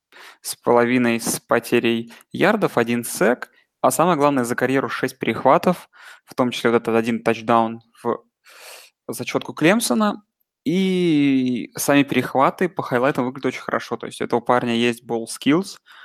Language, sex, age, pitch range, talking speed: Russian, male, 20-39, 115-135 Hz, 150 wpm